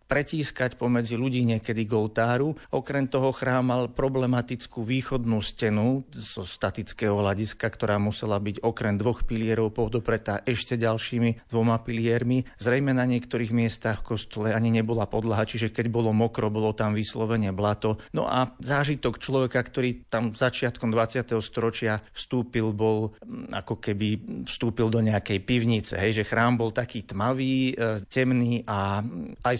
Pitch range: 105-120 Hz